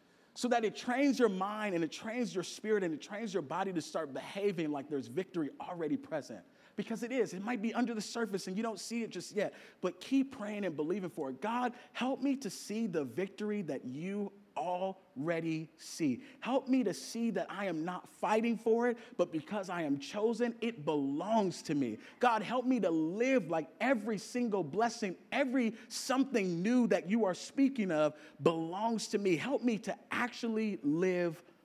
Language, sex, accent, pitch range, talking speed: English, male, American, 165-235 Hz, 195 wpm